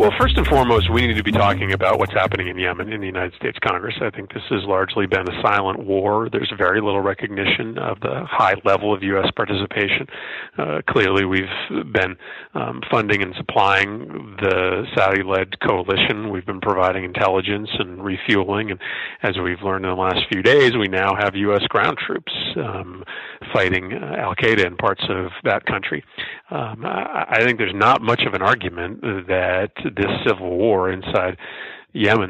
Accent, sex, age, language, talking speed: American, male, 40-59, English, 180 wpm